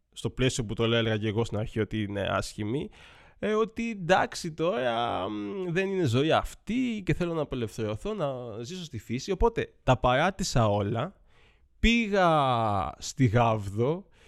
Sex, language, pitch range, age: male, Greek, 115-175 Hz, 20-39